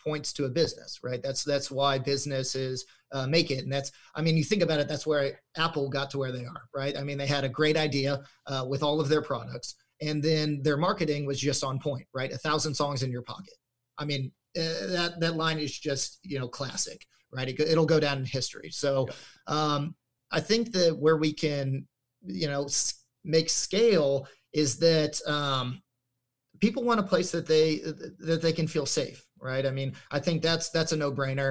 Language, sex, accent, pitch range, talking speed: English, male, American, 135-160 Hz, 210 wpm